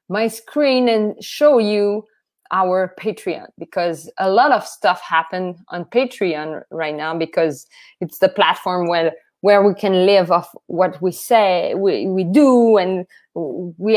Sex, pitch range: female, 180-235 Hz